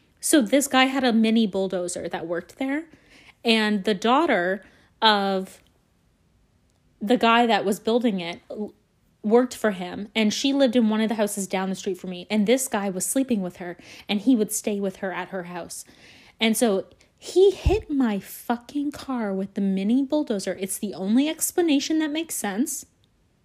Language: English